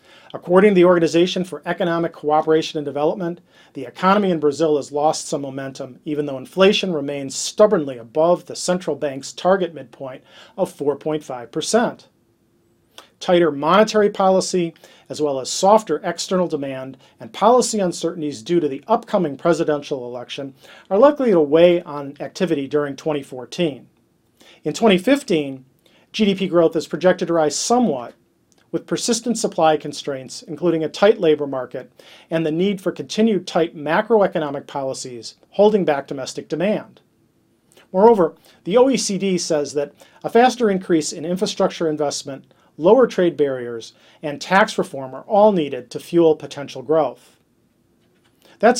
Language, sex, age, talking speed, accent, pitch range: English, male, 40-59, 135 wpm, American, 145-190 Hz